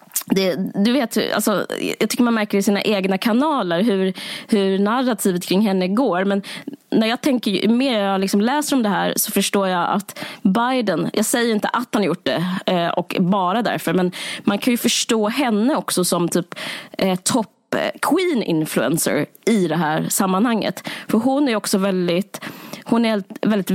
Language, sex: Swedish, female